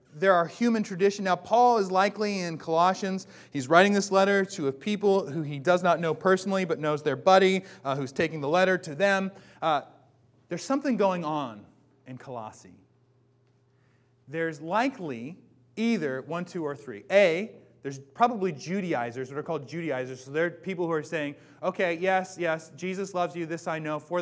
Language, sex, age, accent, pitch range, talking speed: English, male, 30-49, American, 130-180 Hz, 180 wpm